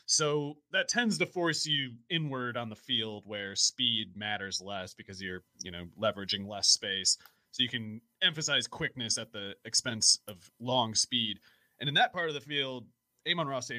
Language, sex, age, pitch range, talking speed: English, male, 30-49, 110-145 Hz, 185 wpm